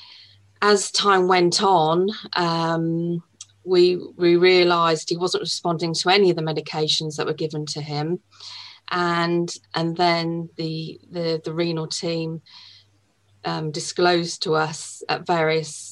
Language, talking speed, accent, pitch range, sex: English, 130 wpm, British, 145-170 Hz, female